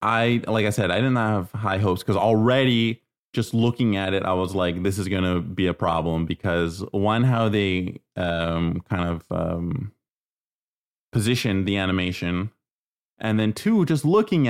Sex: male